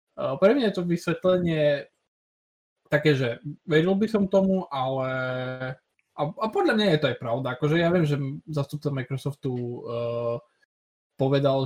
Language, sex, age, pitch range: Slovak, male, 20-39, 130-150 Hz